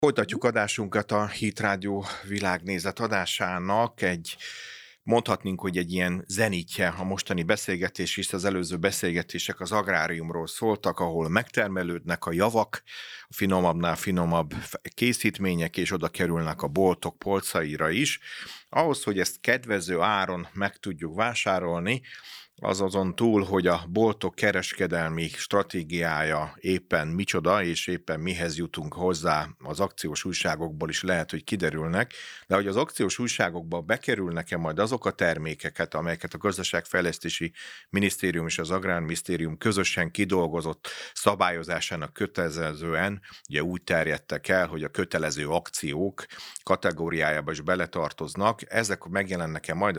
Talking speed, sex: 120 wpm, male